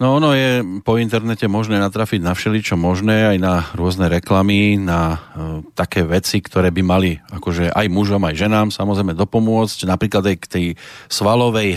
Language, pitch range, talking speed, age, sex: Slovak, 95-125 Hz, 170 wpm, 40-59, male